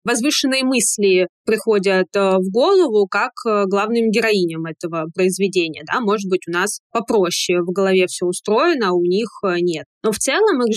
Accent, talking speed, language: native, 155 wpm, Russian